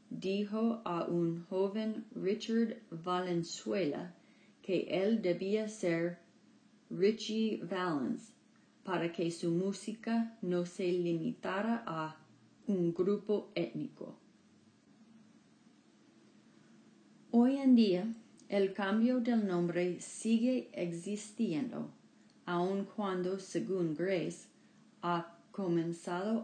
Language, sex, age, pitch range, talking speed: English, female, 30-49, 175-220 Hz, 85 wpm